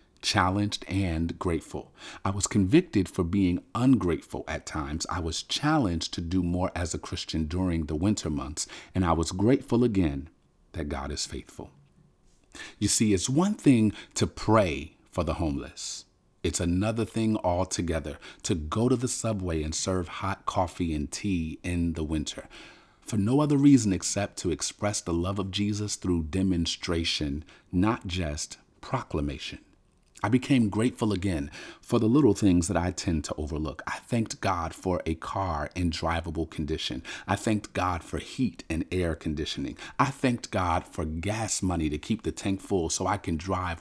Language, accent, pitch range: English, American, 80-105 Hz